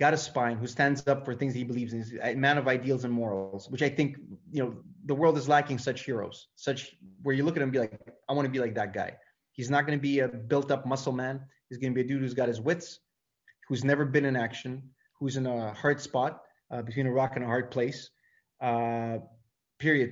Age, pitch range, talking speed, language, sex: 20-39, 115-140 Hz, 255 wpm, English, male